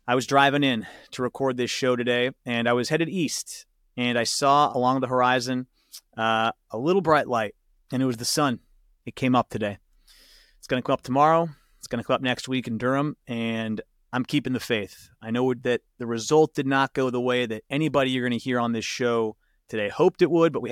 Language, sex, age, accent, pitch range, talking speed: English, male, 30-49, American, 115-135 Hz, 230 wpm